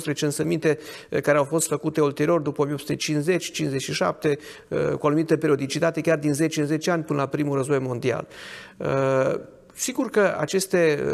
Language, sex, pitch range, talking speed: Romanian, male, 140-165 Hz, 145 wpm